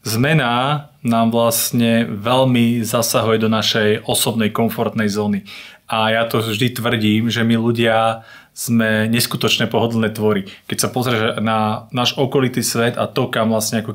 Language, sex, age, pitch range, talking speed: Slovak, male, 30-49, 110-125 Hz, 145 wpm